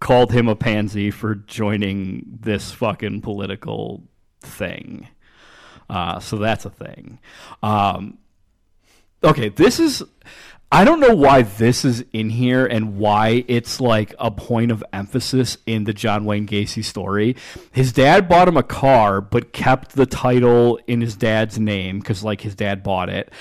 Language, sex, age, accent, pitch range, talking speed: English, male, 40-59, American, 105-120 Hz, 155 wpm